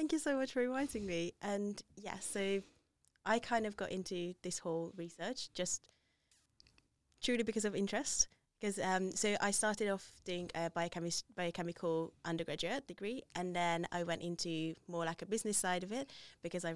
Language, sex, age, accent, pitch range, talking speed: English, female, 20-39, British, 170-200 Hz, 175 wpm